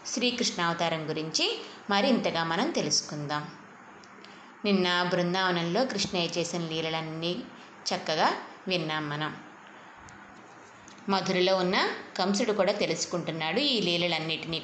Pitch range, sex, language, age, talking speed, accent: 165-215 Hz, female, Telugu, 20-39, 80 wpm, native